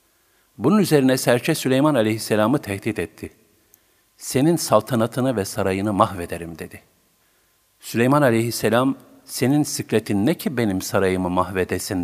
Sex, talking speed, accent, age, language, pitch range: male, 110 wpm, native, 50-69, Turkish, 105-135 Hz